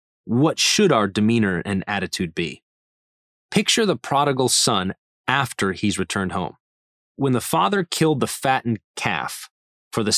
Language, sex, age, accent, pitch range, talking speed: English, male, 30-49, American, 105-140 Hz, 140 wpm